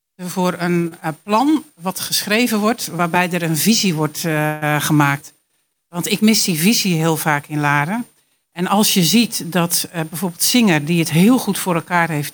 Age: 60-79